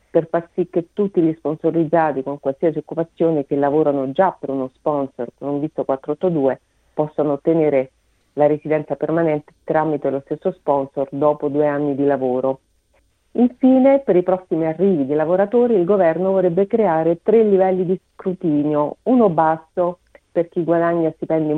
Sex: female